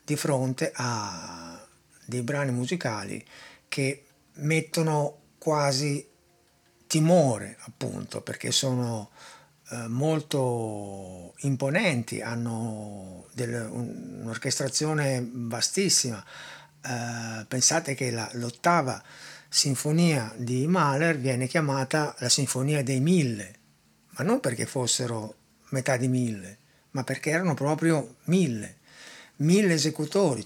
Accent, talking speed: native, 90 wpm